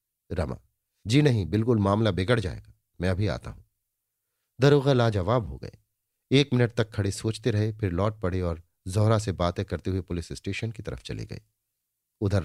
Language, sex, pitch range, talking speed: Hindi, male, 95-115 Hz, 185 wpm